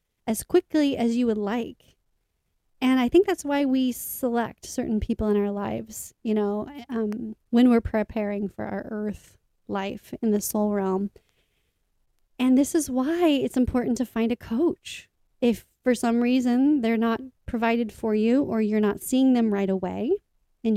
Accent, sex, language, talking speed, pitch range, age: American, female, English, 170 wpm, 215-255 Hz, 30-49